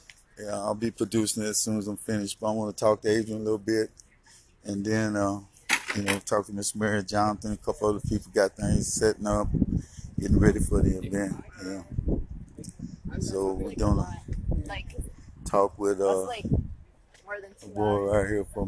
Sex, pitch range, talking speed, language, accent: male, 100-115 Hz, 175 wpm, English, American